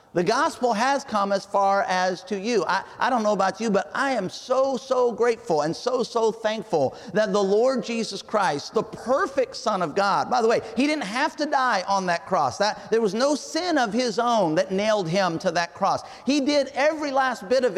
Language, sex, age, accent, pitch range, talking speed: English, male, 40-59, American, 190-245 Hz, 225 wpm